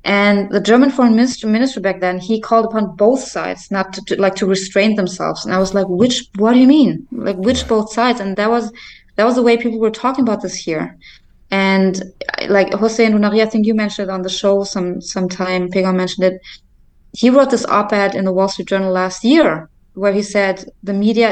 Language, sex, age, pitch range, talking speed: English, female, 20-39, 190-225 Hz, 220 wpm